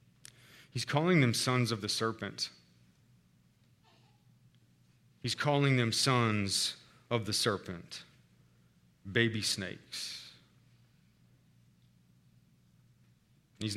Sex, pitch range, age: male, 105-150 Hz, 40-59